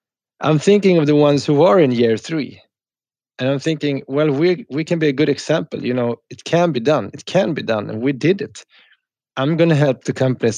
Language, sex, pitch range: English, male, 110-145 Hz